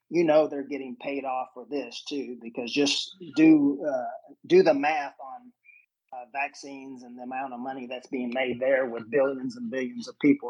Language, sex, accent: Japanese, male, American